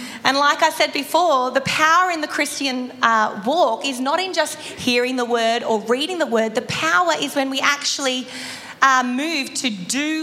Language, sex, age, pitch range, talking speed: English, female, 30-49, 230-290 Hz, 180 wpm